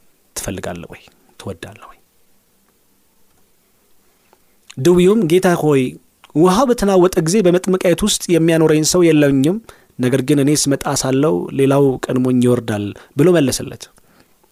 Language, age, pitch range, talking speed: Amharic, 30-49, 110-155 Hz, 100 wpm